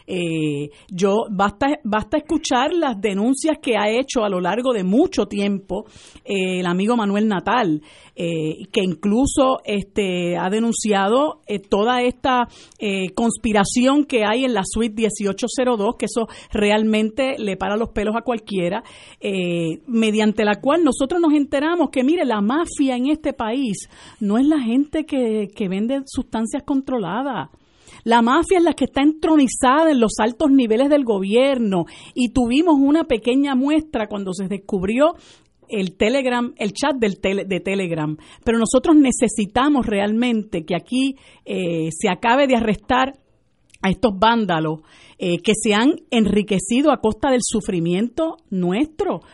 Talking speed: 145 wpm